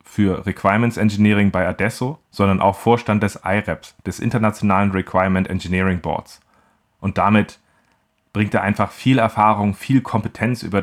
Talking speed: 140 wpm